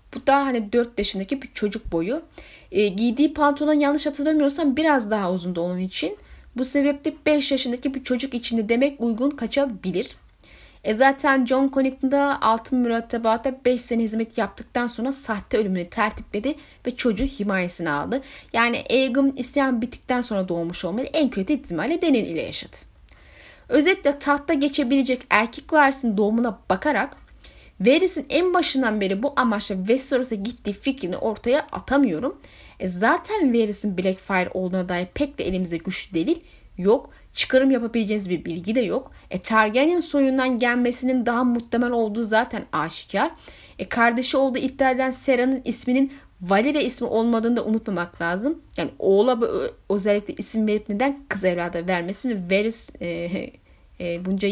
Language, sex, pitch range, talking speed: Turkish, female, 205-275 Hz, 145 wpm